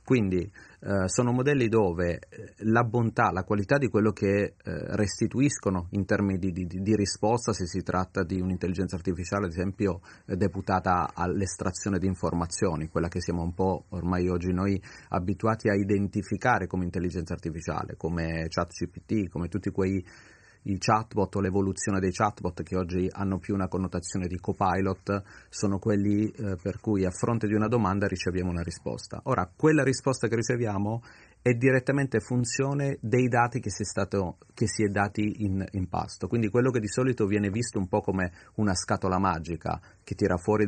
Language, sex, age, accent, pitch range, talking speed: Italian, male, 30-49, native, 95-120 Hz, 175 wpm